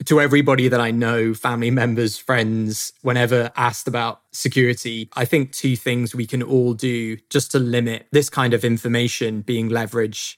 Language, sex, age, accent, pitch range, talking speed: English, male, 20-39, British, 115-130 Hz, 170 wpm